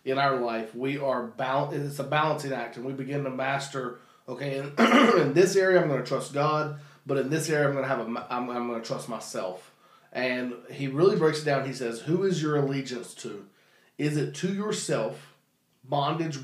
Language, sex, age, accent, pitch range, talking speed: English, male, 30-49, American, 130-155 Hz, 205 wpm